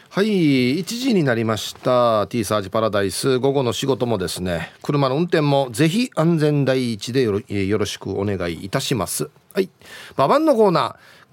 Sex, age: male, 40-59